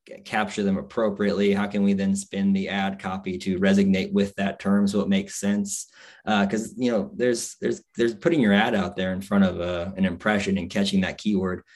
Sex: male